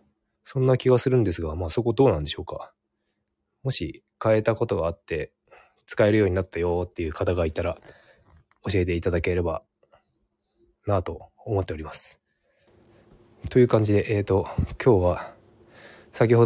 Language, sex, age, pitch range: Japanese, male, 20-39, 85-115 Hz